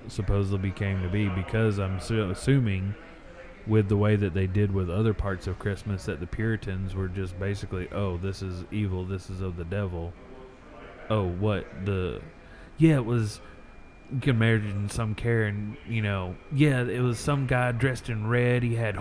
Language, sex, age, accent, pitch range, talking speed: English, male, 30-49, American, 100-120 Hz, 185 wpm